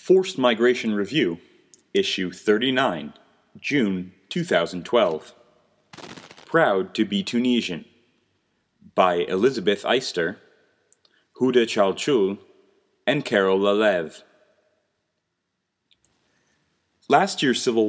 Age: 30-49